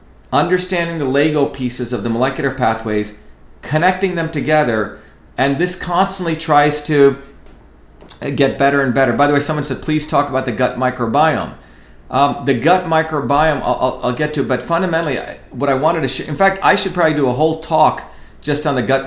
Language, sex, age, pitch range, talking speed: English, male, 40-59, 125-155 Hz, 185 wpm